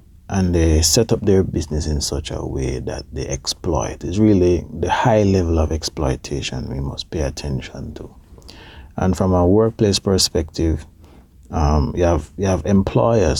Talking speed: 160 wpm